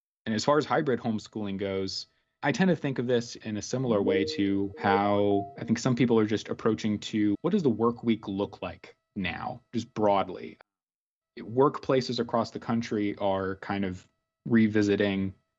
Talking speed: 175 wpm